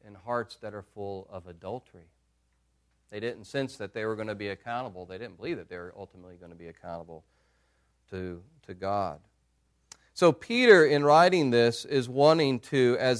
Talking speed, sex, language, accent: 180 wpm, male, English, American